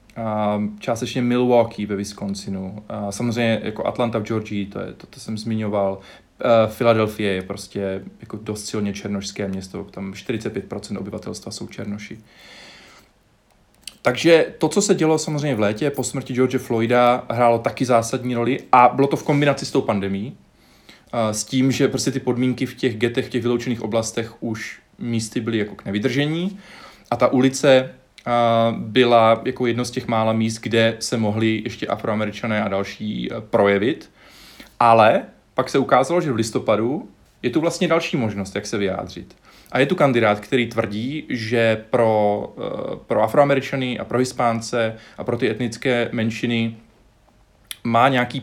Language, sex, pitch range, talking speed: Czech, male, 105-125 Hz, 155 wpm